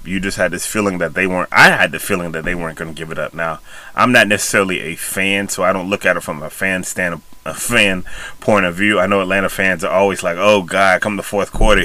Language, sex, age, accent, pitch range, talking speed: English, male, 30-49, American, 90-110 Hz, 275 wpm